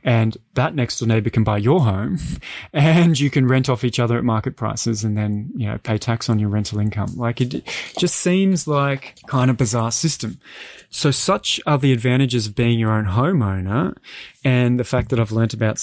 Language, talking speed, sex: English, 205 wpm, male